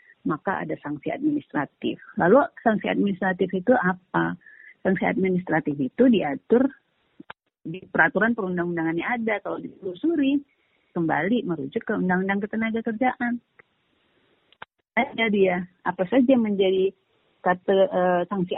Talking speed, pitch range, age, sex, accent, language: 105 wpm, 175-260 Hz, 40-59, female, native, Indonesian